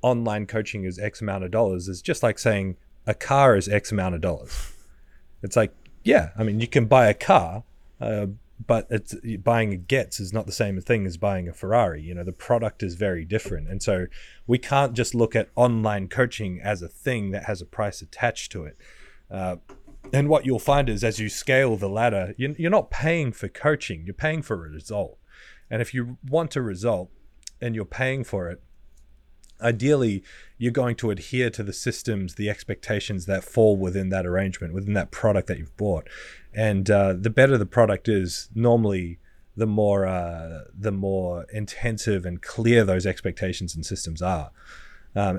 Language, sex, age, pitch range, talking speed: English, male, 30-49, 95-120 Hz, 190 wpm